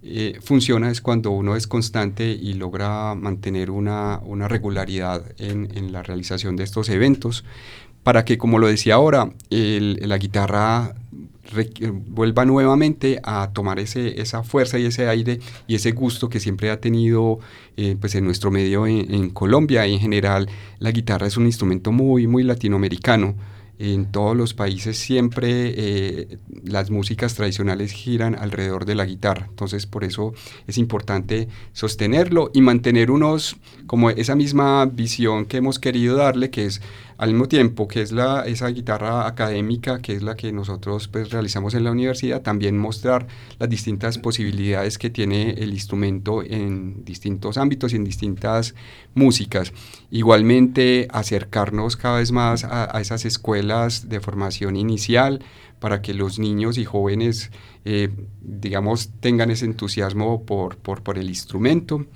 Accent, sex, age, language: Colombian, male, 40-59, Spanish